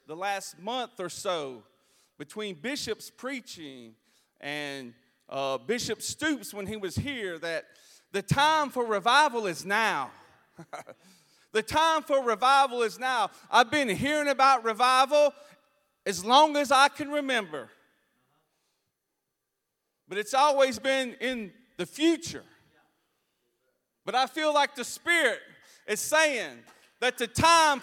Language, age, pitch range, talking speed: English, 40-59, 220-295 Hz, 125 wpm